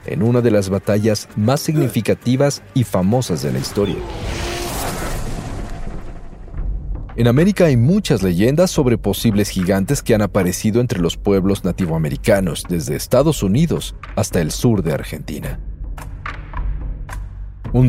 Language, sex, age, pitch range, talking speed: Spanish, male, 40-59, 95-125 Hz, 120 wpm